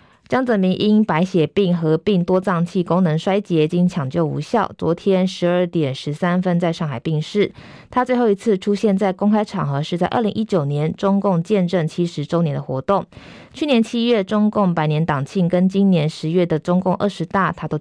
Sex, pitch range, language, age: female, 160-200 Hz, Chinese, 20-39